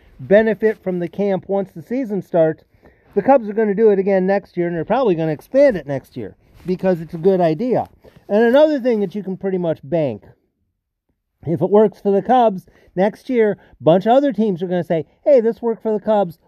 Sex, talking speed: male, 235 wpm